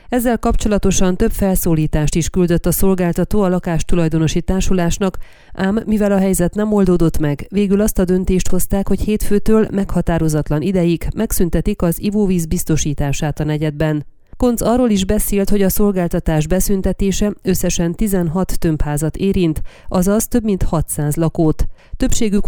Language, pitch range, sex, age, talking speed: Hungarian, 165-205 Hz, female, 30-49, 135 wpm